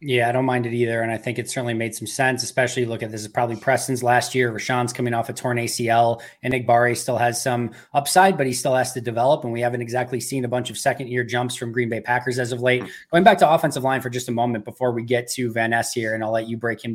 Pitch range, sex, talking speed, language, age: 120-145 Hz, male, 285 wpm, English, 20-39